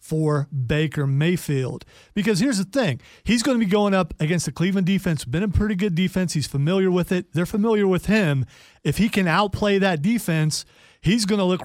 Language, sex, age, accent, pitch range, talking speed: English, male, 40-59, American, 150-200 Hz, 205 wpm